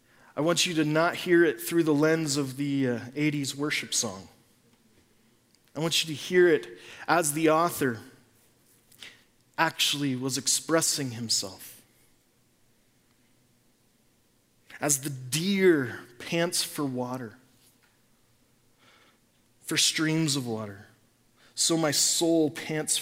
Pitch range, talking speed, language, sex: 120-150 Hz, 110 wpm, English, male